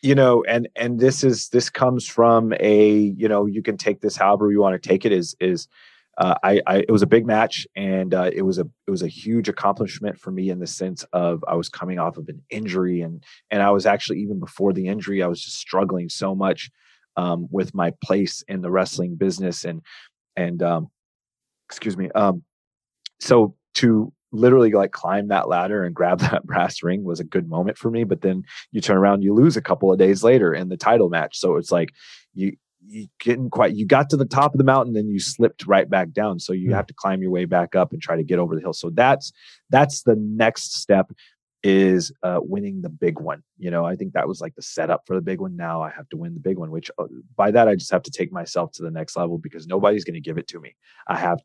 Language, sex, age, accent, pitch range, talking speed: English, male, 30-49, American, 90-115 Hz, 245 wpm